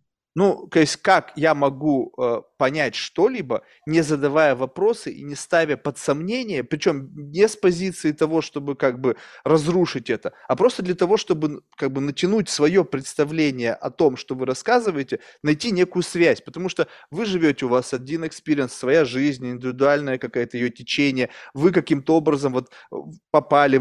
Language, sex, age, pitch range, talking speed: Russian, male, 20-39, 135-170 Hz, 160 wpm